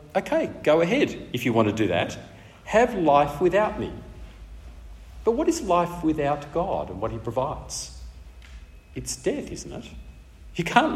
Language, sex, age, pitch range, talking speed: English, male, 50-69, 115-185 Hz, 160 wpm